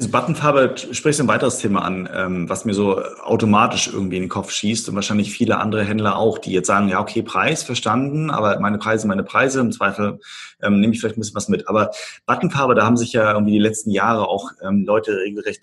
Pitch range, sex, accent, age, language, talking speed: 105-120 Hz, male, German, 30-49, German, 235 wpm